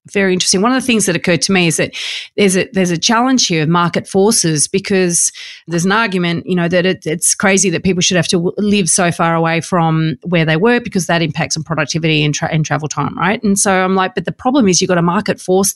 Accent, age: Australian, 30-49